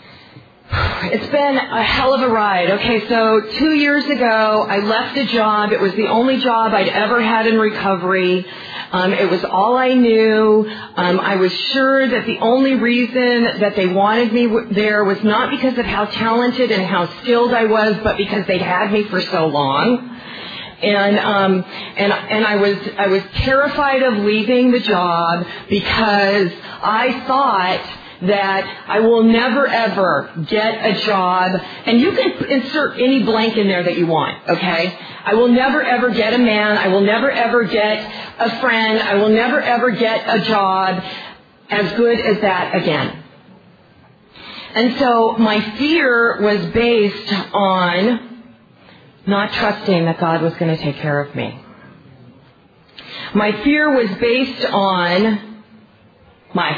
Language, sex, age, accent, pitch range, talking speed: English, female, 40-59, American, 195-240 Hz, 160 wpm